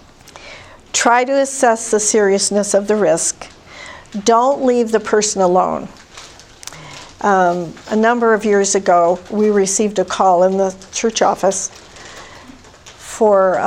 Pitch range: 190-225 Hz